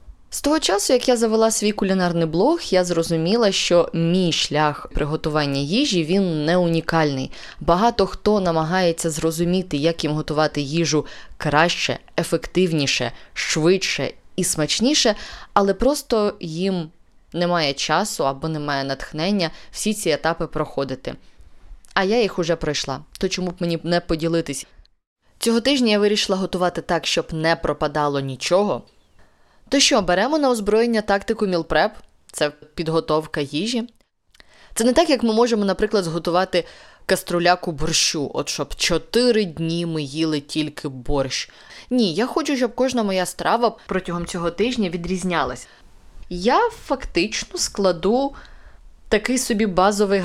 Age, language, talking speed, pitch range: 20-39, Ukrainian, 130 wpm, 160-210 Hz